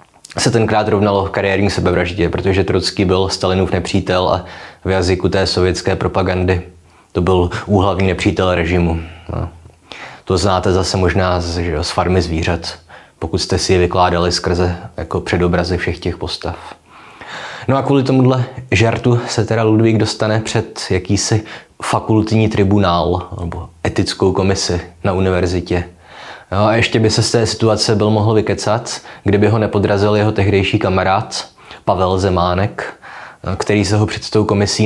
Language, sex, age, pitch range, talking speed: Czech, male, 20-39, 90-105 Hz, 145 wpm